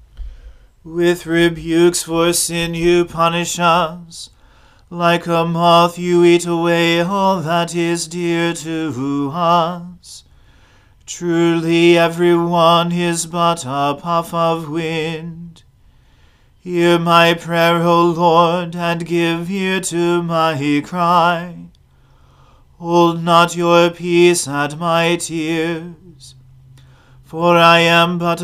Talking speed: 105 wpm